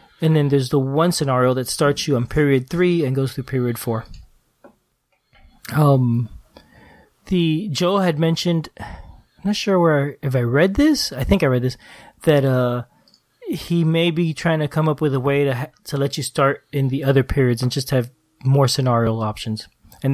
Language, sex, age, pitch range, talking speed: English, male, 30-49, 125-155 Hz, 190 wpm